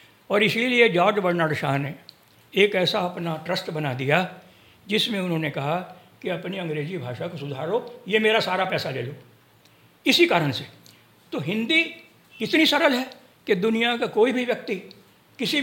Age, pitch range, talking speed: 60-79, 145-205 Hz, 160 wpm